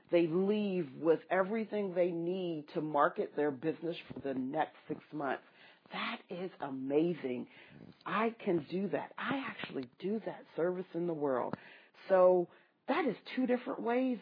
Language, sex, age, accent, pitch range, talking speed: English, female, 40-59, American, 170-230 Hz, 150 wpm